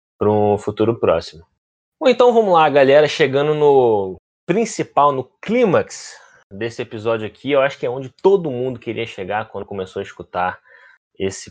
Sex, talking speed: male, 160 wpm